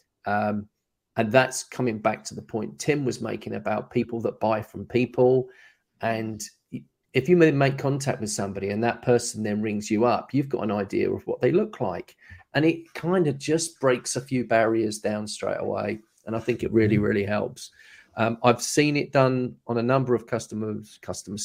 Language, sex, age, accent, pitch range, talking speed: English, male, 40-59, British, 110-135 Hz, 195 wpm